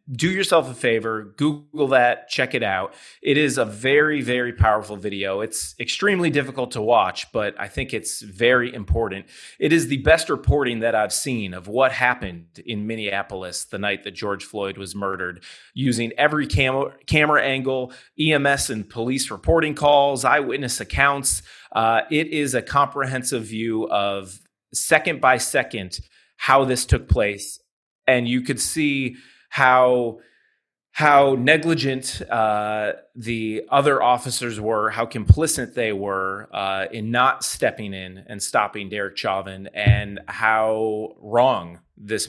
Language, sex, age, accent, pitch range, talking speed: English, male, 30-49, American, 100-135 Hz, 145 wpm